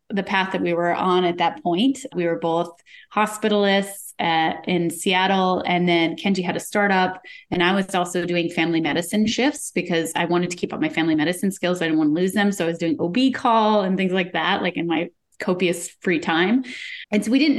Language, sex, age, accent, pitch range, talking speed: English, female, 20-39, American, 170-210 Hz, 220 wpm